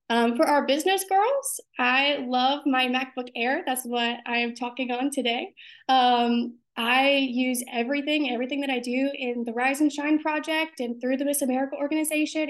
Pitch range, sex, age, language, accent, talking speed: 250-300 Hz, female, 20-39, English, American, 180 wpm